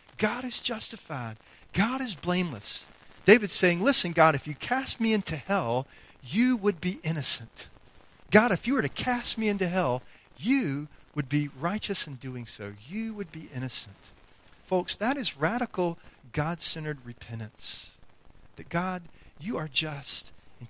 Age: 40-59